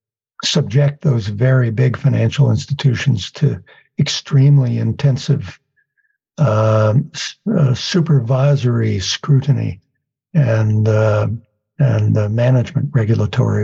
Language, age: English, 60-79